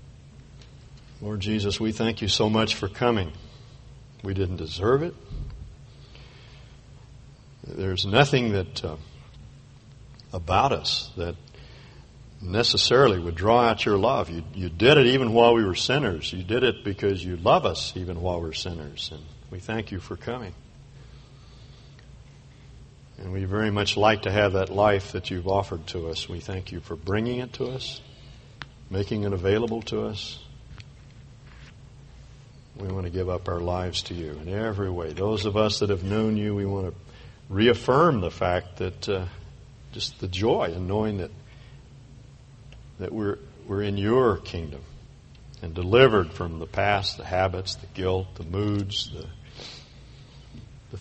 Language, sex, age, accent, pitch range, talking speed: English, male, 60-79, American, 90-115 Hz, 155 wpm